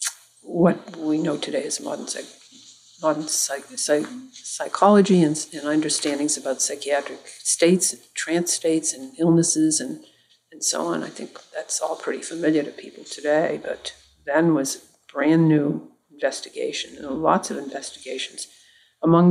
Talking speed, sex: 150 wpm, female